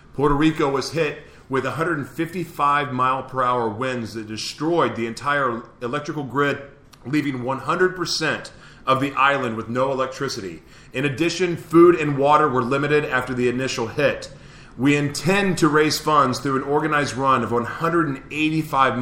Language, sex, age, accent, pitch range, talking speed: English, male, 30-49, American, 130-160 Hz, 145 wpm